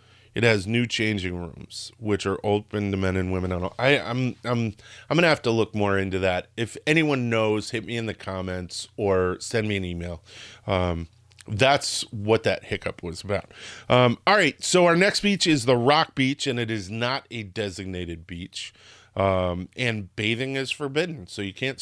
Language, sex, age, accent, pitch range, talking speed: English, male, 30-49, American, 100-130 Hz, 185 wpm